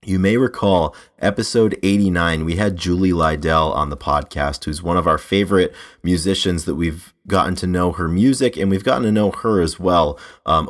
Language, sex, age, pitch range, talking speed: English, male, 30-49, 80-95 Hz, 190 wpm